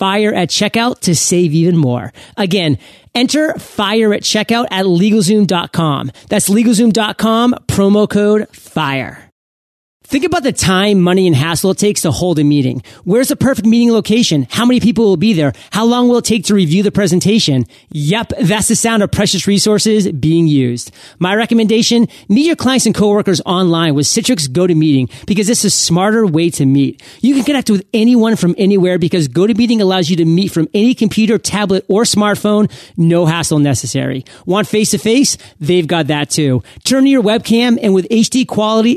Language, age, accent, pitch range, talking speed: English, 30-49, American, 165-220 Hz, 180 wpm